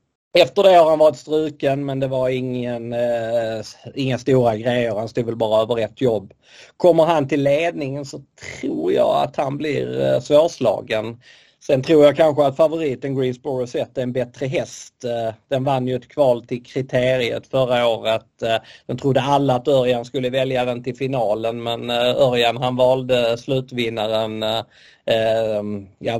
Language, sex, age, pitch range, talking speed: Swedish, male, 30-49, 110-135 Hz, 160 wpm